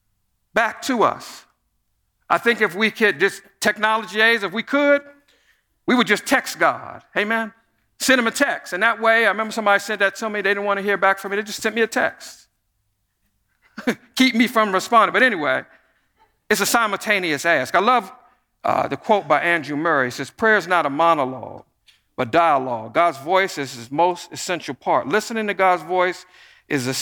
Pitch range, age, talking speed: 125-200 Hz, 50-69, 195 wpm